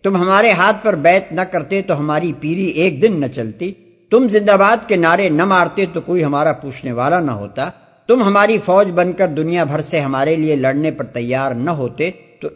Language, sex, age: Urdu, male, 60-79